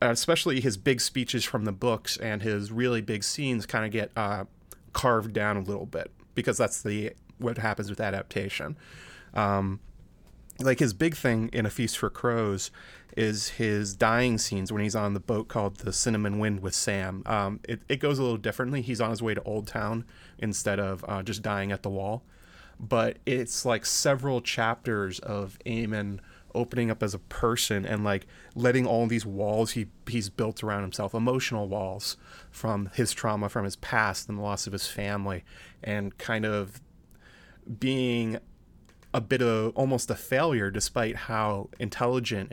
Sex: male